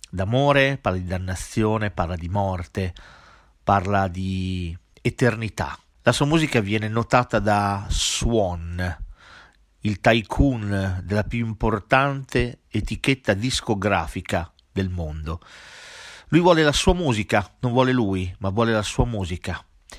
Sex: male